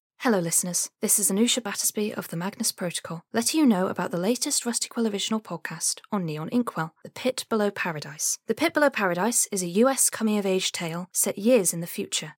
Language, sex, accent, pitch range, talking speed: English, female, British, 170-230 Hz, 195 wpm